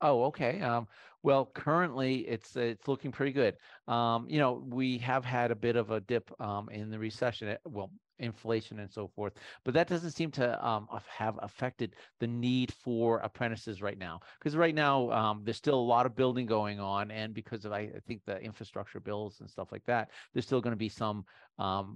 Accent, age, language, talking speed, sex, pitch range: American, 40-59, English, 210 wpm, male, 105-130 Hz